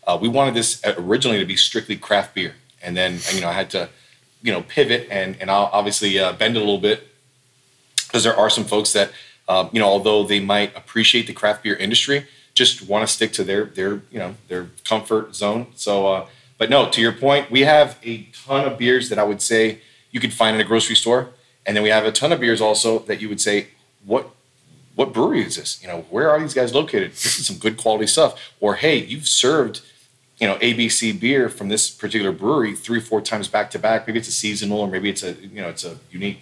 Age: 30-49